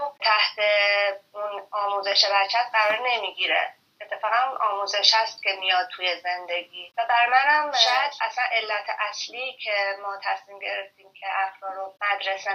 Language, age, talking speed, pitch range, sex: Persian, 30-49, 125 wpm, 195-225 Hz, female